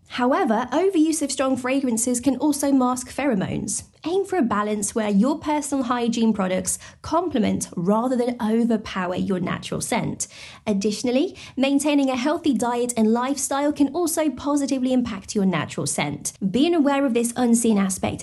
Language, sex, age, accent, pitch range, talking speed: English, female, 20-39, British, 200-275 Hz, 150 wpm